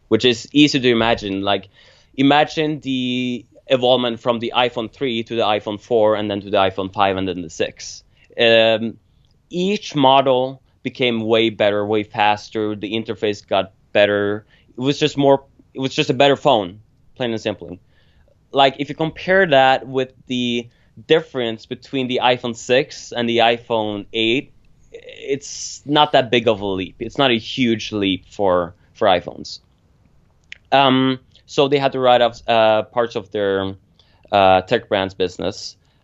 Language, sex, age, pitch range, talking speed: English, male, 20-39, 105-135 Hz, 165 wpm